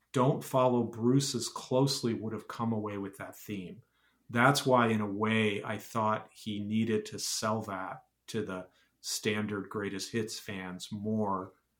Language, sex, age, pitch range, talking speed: English, male, 40-59, 100-120 Hz, 160 wpm